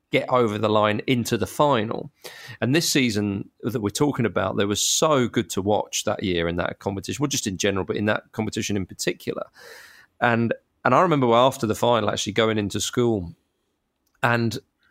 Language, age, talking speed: English, 30-49, 195 wpm